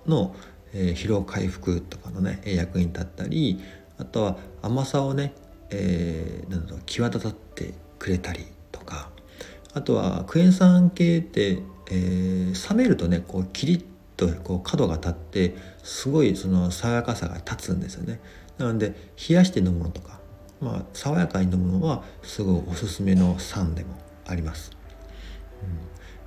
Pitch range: 90-115 Hz